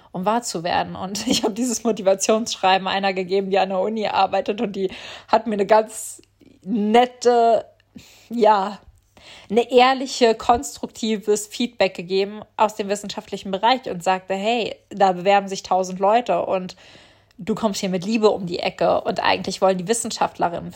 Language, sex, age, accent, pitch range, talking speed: German, female, 20-39, German, 185-215 Hz, 160 wpm